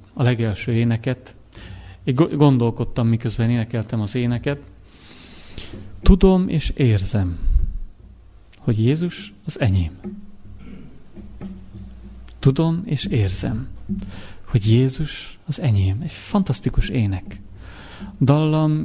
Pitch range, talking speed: 100-135 Hz, 85 wpm